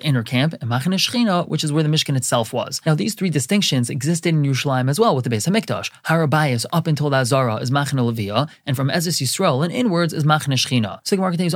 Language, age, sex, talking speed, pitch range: English, 20-39, male, 230 wpm, 125-160 Hz